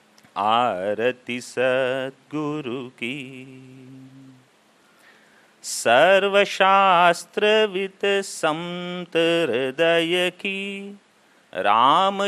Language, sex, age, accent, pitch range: English, male, 40-59, Indian, 135-190 Hz